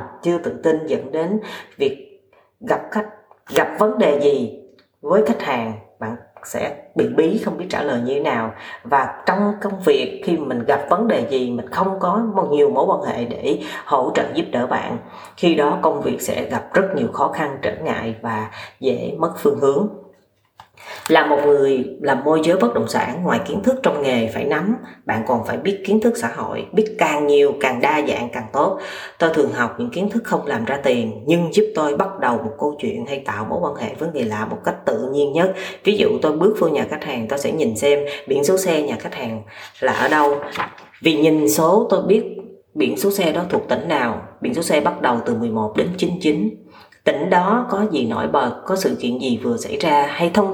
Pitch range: 140-200 Hz